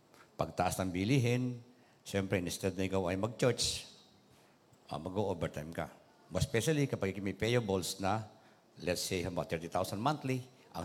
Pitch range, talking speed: 95-115 Hz, 150 wpm